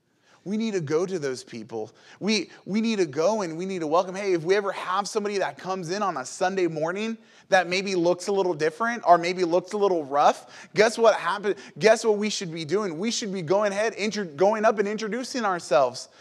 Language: English